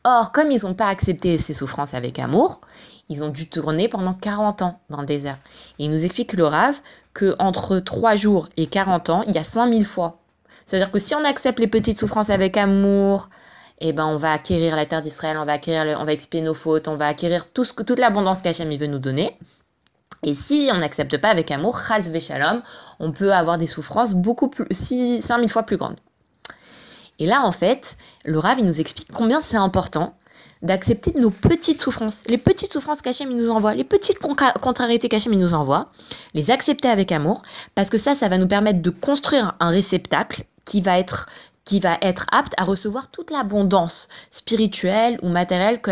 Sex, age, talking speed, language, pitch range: female, 20-39, 200 wpm, French, 165-230 Hz